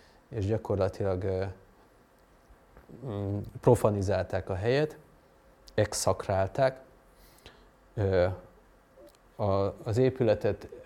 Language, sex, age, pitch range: Hungarian, male, 30-49, 95-115 Hz